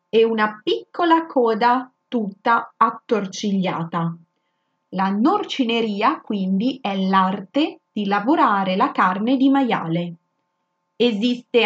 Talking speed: 95 wpm